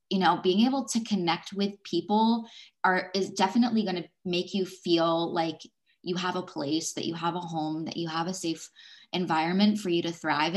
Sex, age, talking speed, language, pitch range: female, 20-39, 205 wpm, English, 170-215 Hz